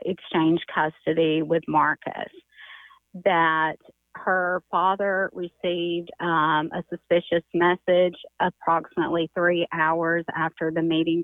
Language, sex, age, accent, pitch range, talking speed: English, female, 30-49, American, 165-190 Hz, 95 wpm